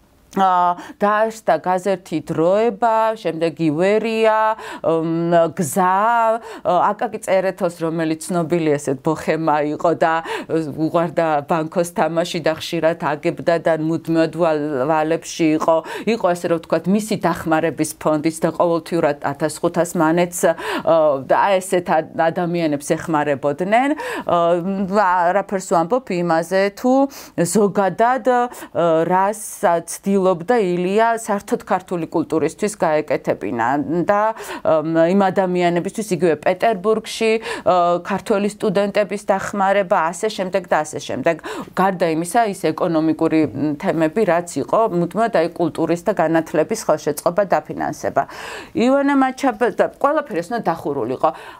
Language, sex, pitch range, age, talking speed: English, female, 165-210 Hz, 40-59, 90 wpm